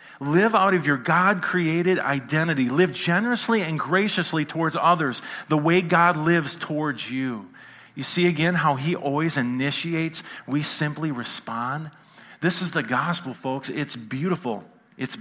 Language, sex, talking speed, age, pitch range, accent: English, male, 140 wpm, 40-59, 125-165 Hz, American